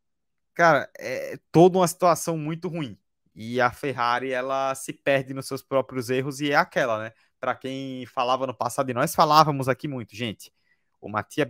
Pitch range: 130-160 Hz